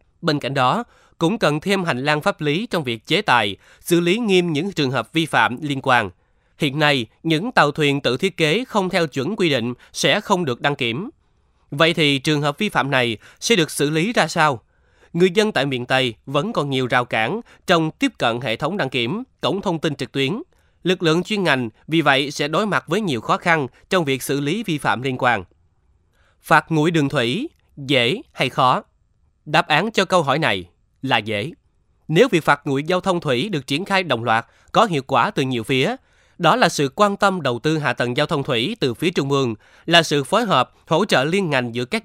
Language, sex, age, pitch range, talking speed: Vietnamese, male, 20-39, 125-175 Hz, 225 wpm